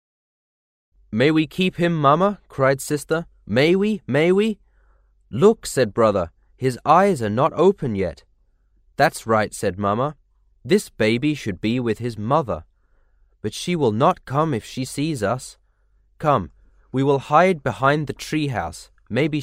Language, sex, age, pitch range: Chinese, male, 20-39, 95-145 Hz